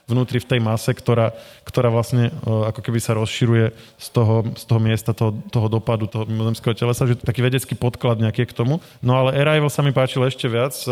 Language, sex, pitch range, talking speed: Slovak, male, 115-130 Hz, 215 wpm